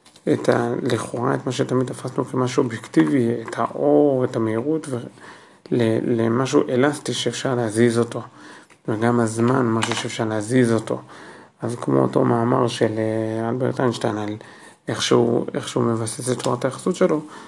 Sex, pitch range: male, 115-130 Hz